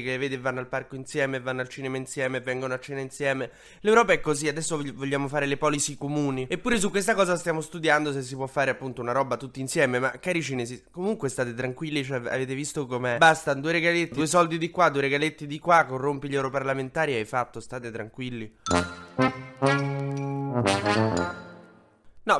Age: 20-39